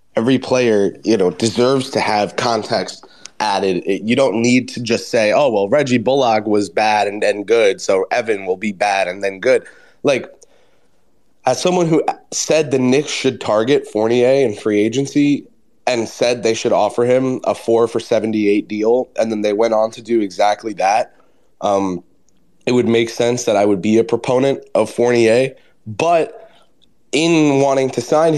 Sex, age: male, 20-39